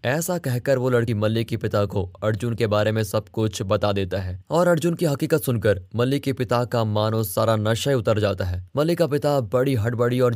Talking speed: 215 wpm